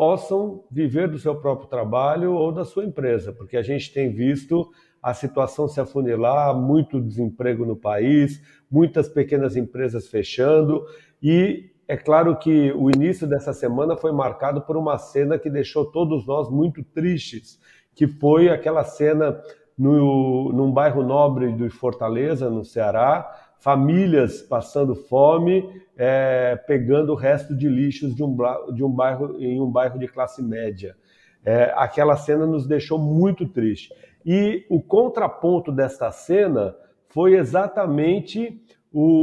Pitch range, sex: 130-165 Hz, male